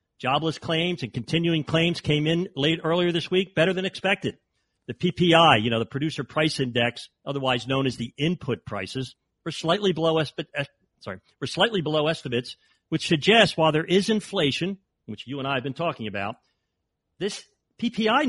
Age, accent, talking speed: 50-69, American, 160 wpm